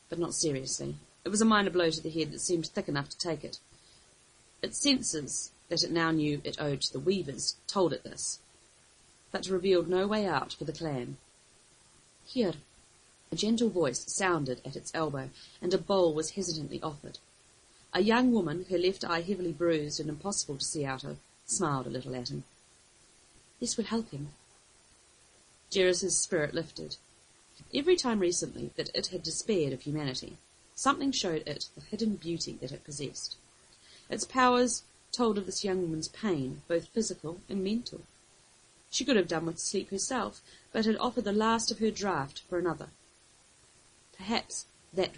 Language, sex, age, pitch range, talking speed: English, female, 40-59, 155-205 Hz, 170 wpm